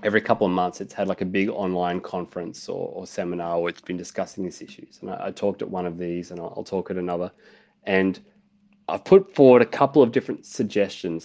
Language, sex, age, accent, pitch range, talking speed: English, male, 30-49, Australian, 100-130 Hz, 230 wpm